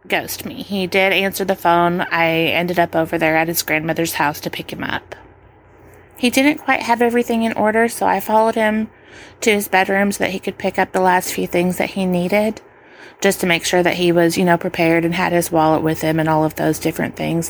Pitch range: 170-220 Hz